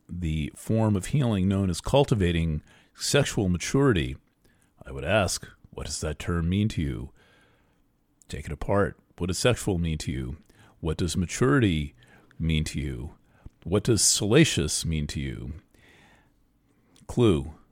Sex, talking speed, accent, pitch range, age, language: male, 140 wpm, American, 85-110 Hz, 40-59, English